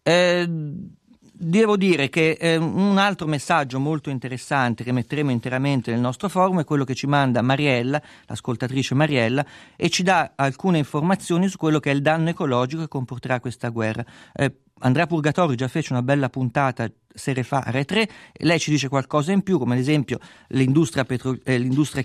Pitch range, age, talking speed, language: 120-155 Hz, 40-59, 165 wpm, Italian